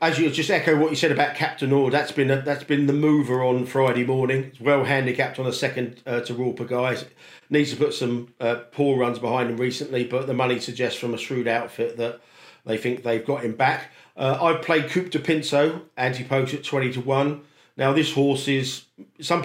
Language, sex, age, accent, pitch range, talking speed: English, male, 50-69, British, 125-145 Hz, 220 wpm